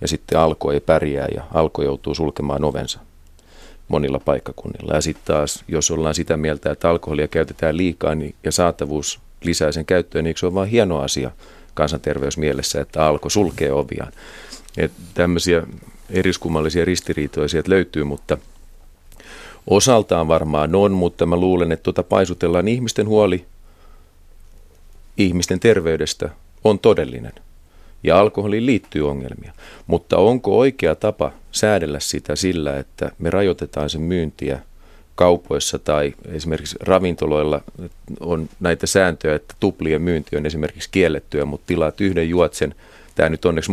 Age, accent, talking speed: 40-59, native, 130 wpm